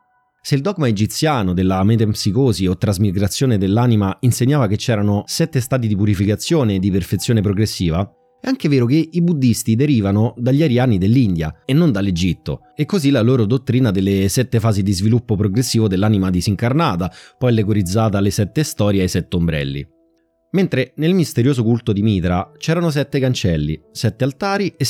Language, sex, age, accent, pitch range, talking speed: Italian, male, 30-49, native, 105-150 Hz, 160 wpm